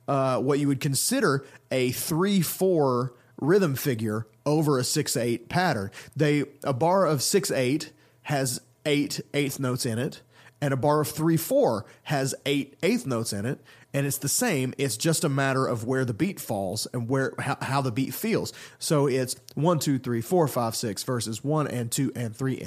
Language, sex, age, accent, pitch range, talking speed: English, male, 30-49, American, 125-155 Hz, 195 wpm